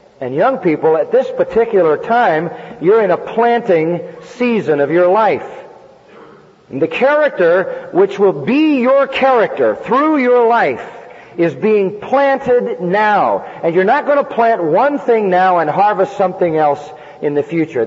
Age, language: 40-59, English